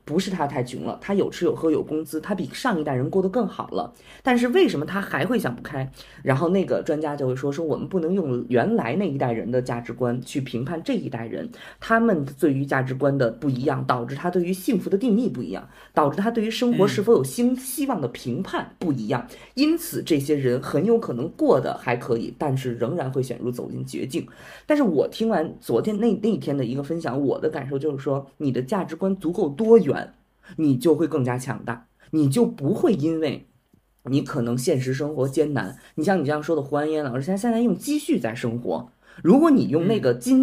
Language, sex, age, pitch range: Chinese, female, 20-39, 130-210 Hz